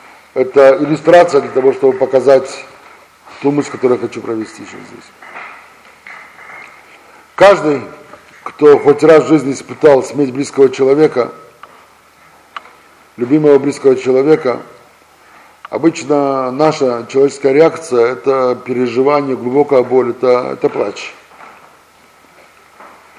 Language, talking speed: Russian, 100 wpm